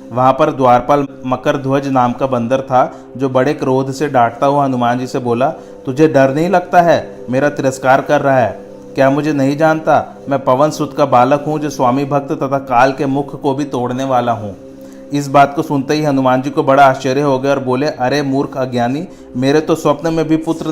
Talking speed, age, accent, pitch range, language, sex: 210 wpm, 40-59, native, 125-150 Hz, Hindi, male